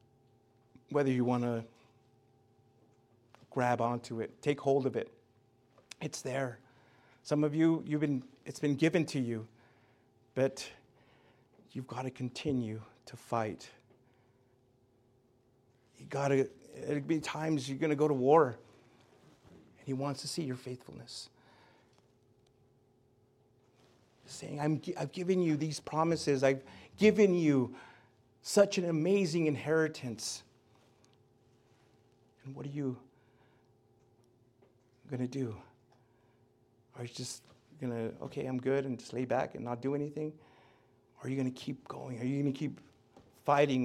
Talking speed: 135 wpm